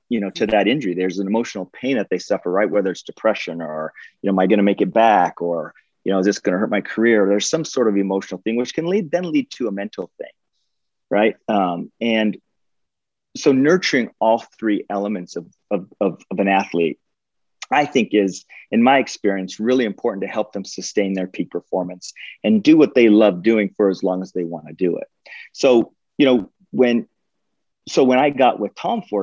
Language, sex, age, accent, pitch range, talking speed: English, male, 40-59, American, 95-115 Hz, 220 wpm